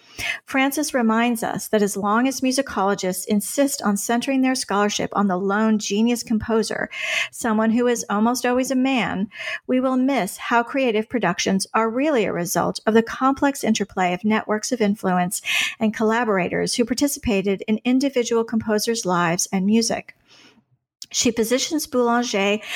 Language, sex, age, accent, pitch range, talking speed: English, female, 40-59, American, 210-245 Hz, 150 wpm